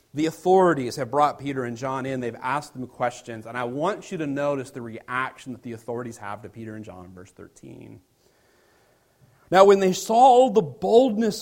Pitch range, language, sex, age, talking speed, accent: 130-195 Hz, English, male, 40-59, 190 wpm, American